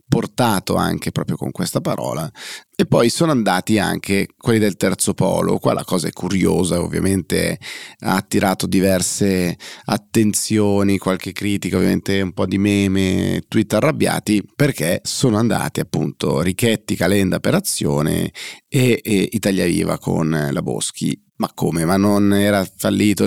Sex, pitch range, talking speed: male, 90-110 Hz, 140 wpm